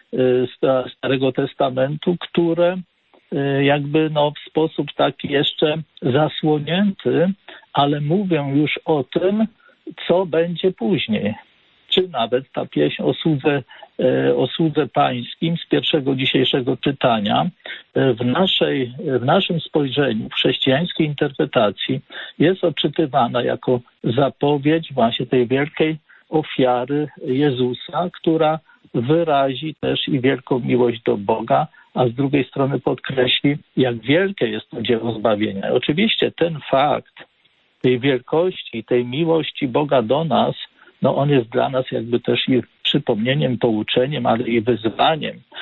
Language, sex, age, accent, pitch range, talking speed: Polish, male, 50-69, native, 125-165 Hz, 120 wpm